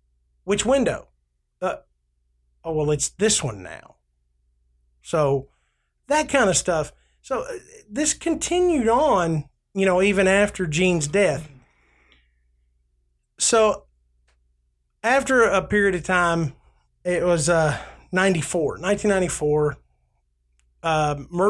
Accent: American